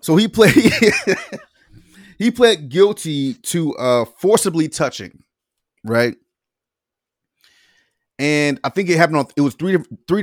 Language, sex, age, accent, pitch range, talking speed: English, male, 30-49, American, 115-175 Hz, 125 wpm